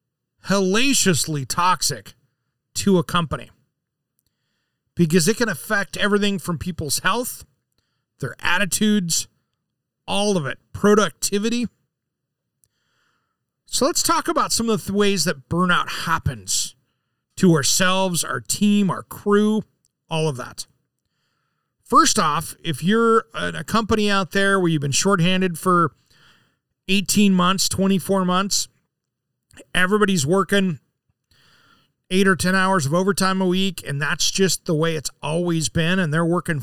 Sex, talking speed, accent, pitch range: male, 125 wpm, American, 150-200 Hz